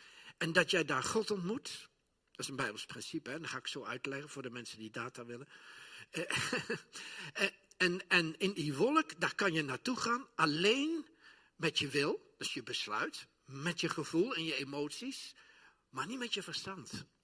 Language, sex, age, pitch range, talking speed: Dutch, male, 50-69, 140-195 Hz, 180 wpm